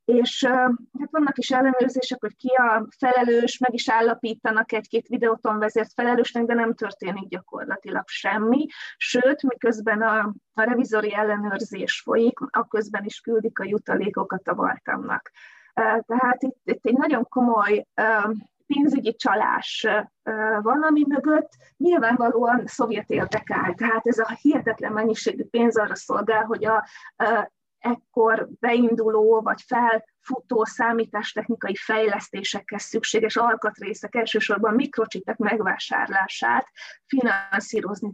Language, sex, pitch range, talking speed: Hungarian, female, 210-245 Hz, 110 wpm